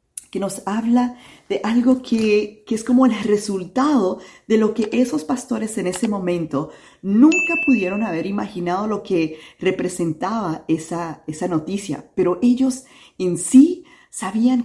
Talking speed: 140 wpm